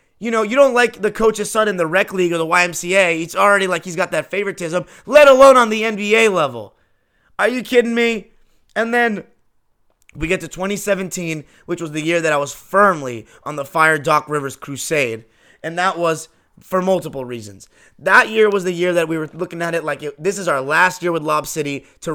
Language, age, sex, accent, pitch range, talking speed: English, 20-39, male, American, 155-195 Hz, 215 wpm